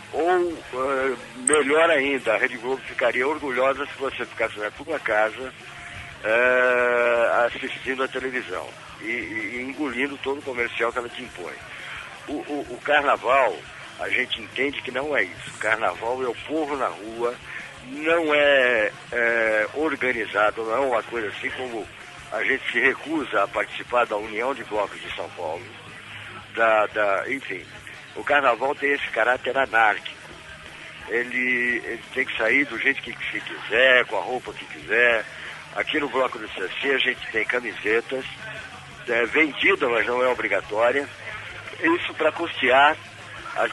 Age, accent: 60-79, Brazilian